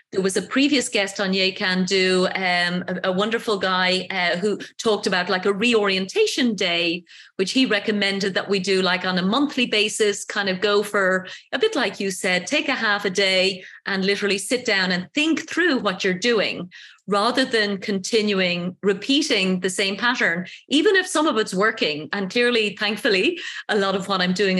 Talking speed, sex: 195 wpm, female